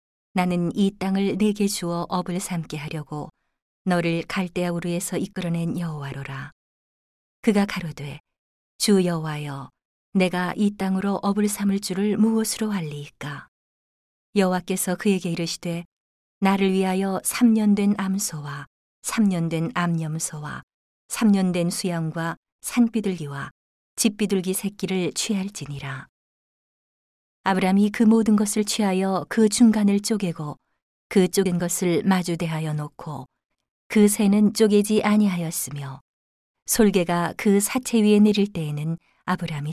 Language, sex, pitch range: Korean, female, 165-205 Hz